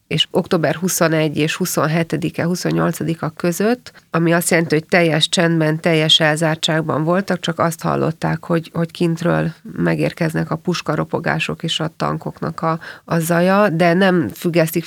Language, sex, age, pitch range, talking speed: Hungarian, female, 30-49, 160-180 Hz, 135 wpm